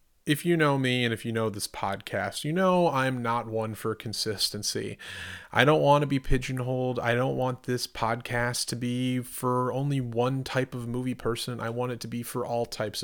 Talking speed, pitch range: 205 wpm, 115-130 Hz